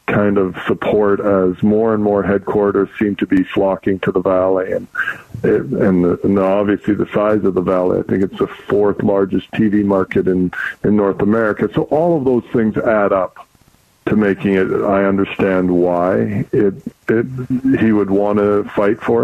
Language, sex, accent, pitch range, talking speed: English, male, American, 95-105 Hz, 180 wpm